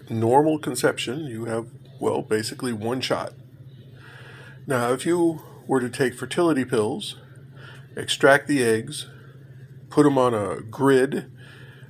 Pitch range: 125-135 Hz